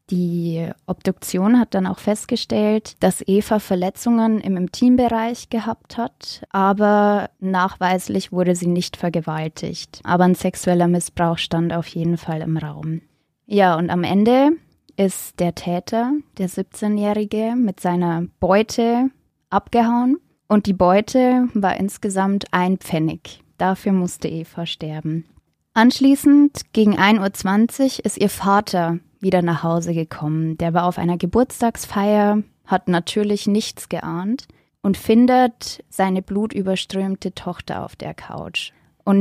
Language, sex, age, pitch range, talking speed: German, female, 20-39, 175-215 Hz, 125 wpm